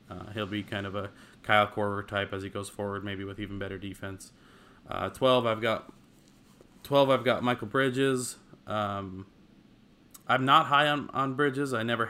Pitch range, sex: 100-120 Hz, male